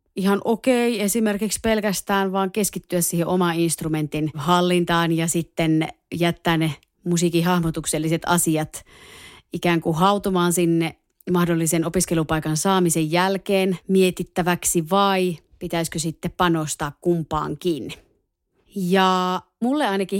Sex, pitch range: female, 165-190 Hz